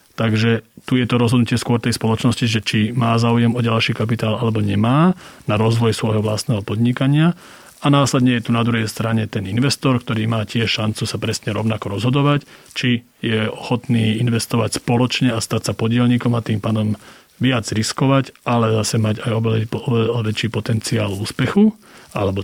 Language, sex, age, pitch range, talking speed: Slovak, male, 40-59, 110-120 Hz, 165 wpm